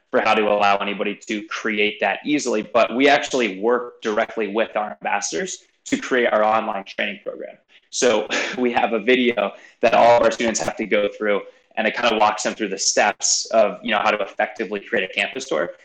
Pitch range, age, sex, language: 105-135 Hz, 20-39, male, English